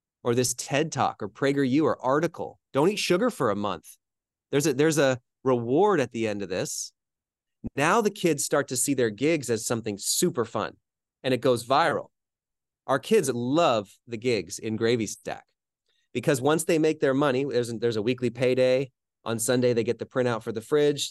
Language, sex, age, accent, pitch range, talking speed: English, male, 30-49, American, 115-150 Hz, 195 wpm